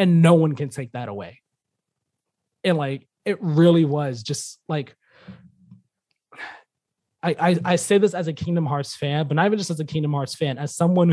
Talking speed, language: 190 wpm, English